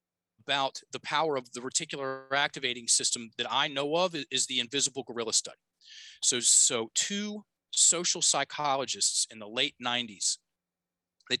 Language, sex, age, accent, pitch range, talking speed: English, male, 30-49, American, 120-170 Hz, 140 wpm